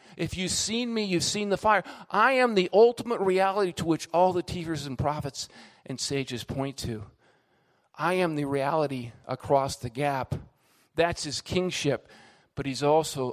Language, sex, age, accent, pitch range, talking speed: English, male, 40-59, American, 140-195 Hz, 165 wpm